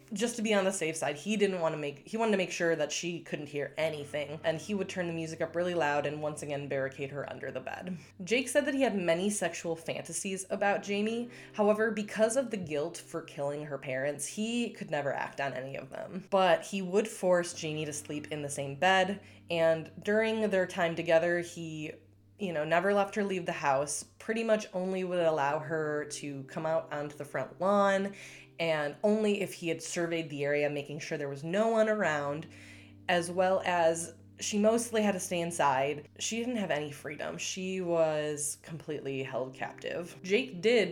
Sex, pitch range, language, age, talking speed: female, 145-190 Hz, English, 20-39, 205 wpm